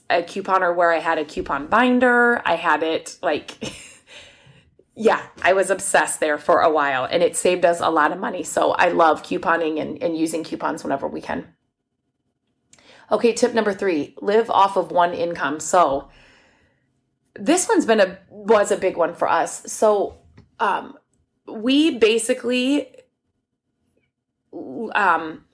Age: 30-49